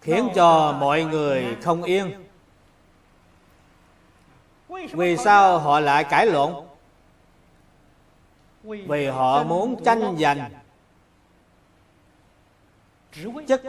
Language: Vietnamese